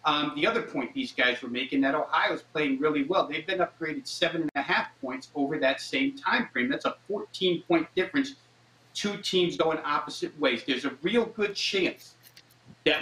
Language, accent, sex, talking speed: English, American, male, 175 wpm